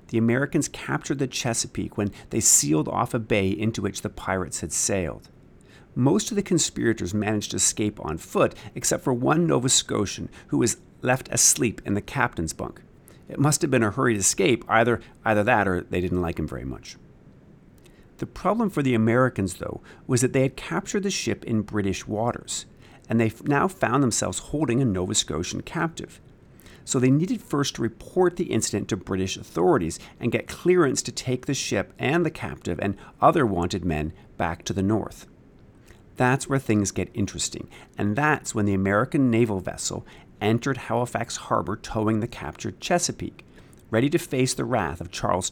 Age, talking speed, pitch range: 50-69, 180 wpm, 100-130 Hz